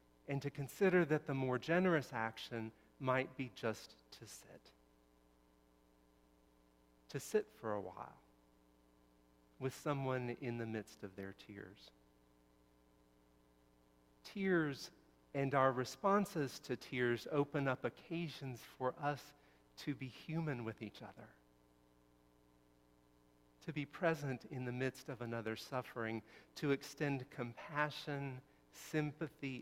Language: English